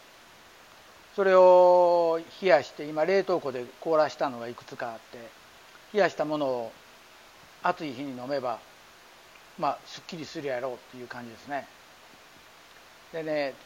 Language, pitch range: Japanese, 155-220 Hz